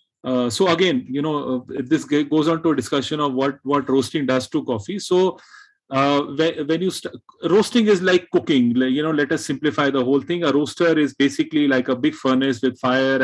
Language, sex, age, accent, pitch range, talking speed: English, male, 30-49, Indian, 130-175 Hz, 220 wpm